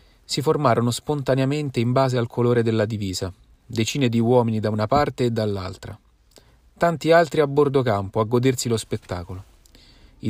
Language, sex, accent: Italian, male, native